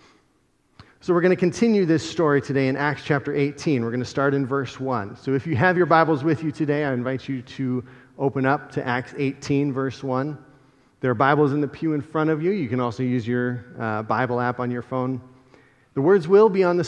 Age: 30-49